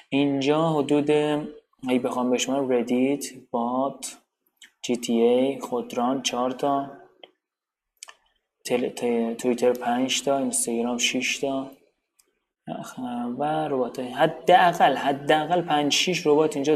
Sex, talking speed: male, 100 wpm